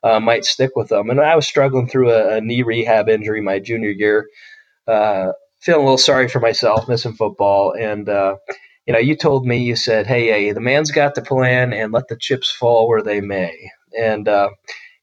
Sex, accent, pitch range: male, American, 105-130 Hz